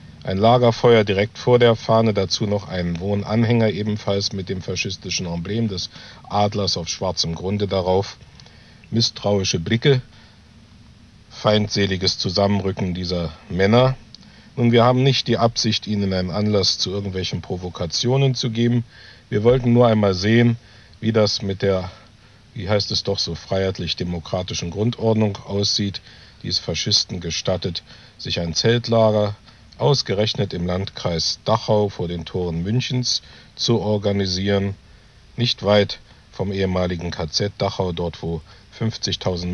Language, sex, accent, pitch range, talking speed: German, male, German, 90-110 Hz, 125 wpm